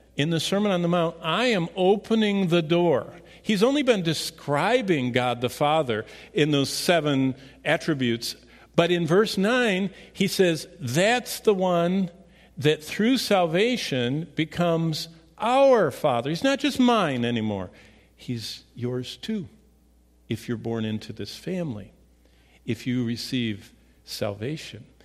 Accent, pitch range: American, 120-185 Hz